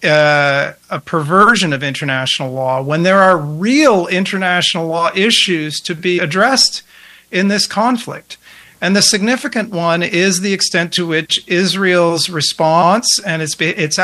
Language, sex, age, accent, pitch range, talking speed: English, male, 50-69, American, 160-205 Hz, 140 wpm